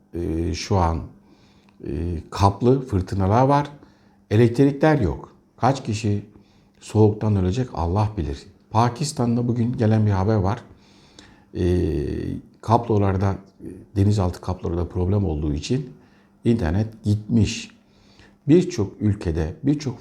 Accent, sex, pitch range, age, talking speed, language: native, male, 95-125 Hz, 60-79, 90 wpm, Turkish